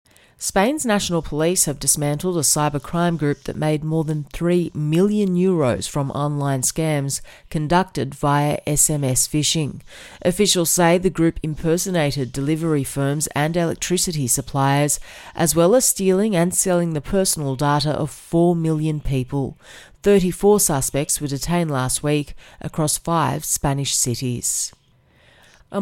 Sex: female